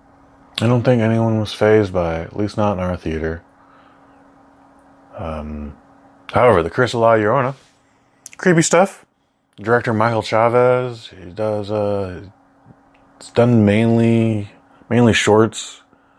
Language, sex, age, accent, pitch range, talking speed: English, male, 20-39, American, 85-110 Hz, 125 wpm